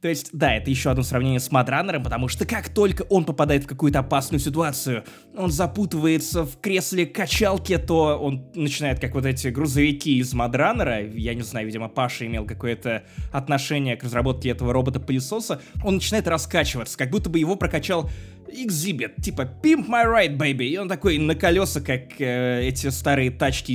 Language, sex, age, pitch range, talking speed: Russian, male, 20-39, 130-185 Hz, 170 wpm